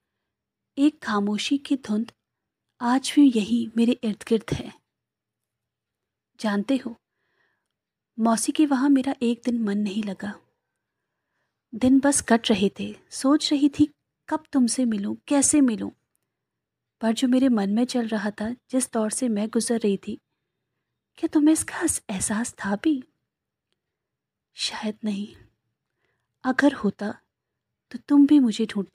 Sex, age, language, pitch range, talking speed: female, 30-49, Hindi, 205-260 Hz, 135 wpm